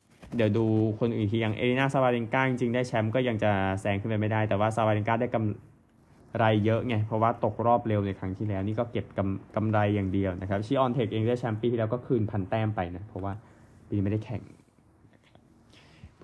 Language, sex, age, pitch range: Thai, male, 20-39, 105-120 Hz